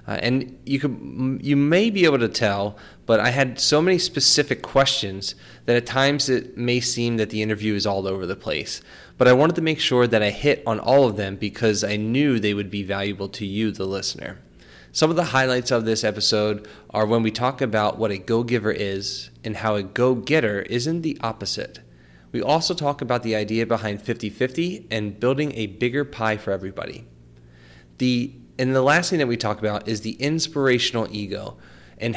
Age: 20-39